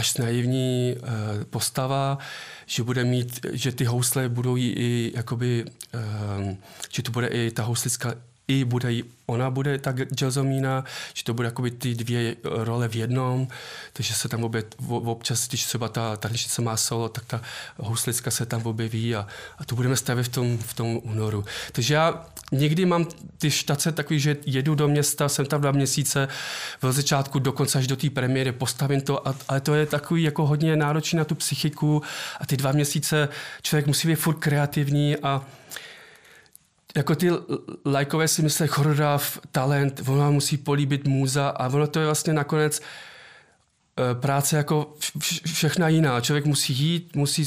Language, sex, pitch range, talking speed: Czech, male, 125-150 Hz, 165 wpm